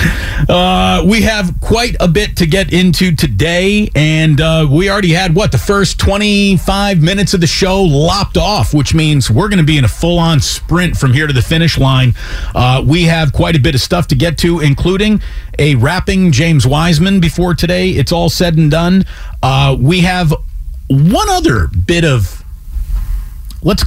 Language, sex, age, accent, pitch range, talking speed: English, male, 40-59, American, 120-180 Hz, 180 wpm